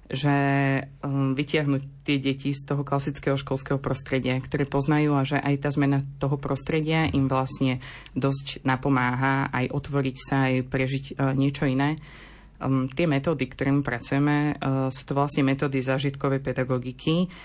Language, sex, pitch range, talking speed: Slovak, female, 130-140 Hz, 135 wpm